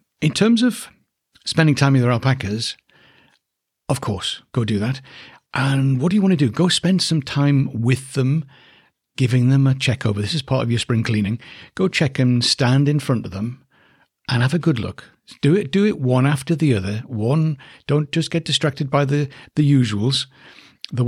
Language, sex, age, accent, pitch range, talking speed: English, male, 60-79, British, 110-140 Hz, 195 wpm